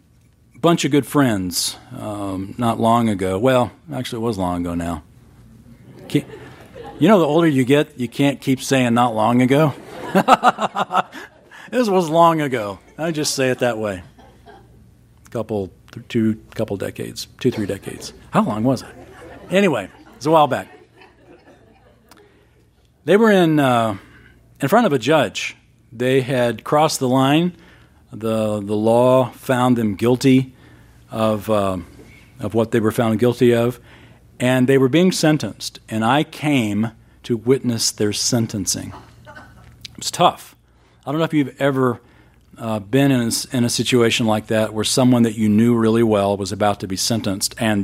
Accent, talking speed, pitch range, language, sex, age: American, 165 wpm, 105-130 Hz, English, male, 40-59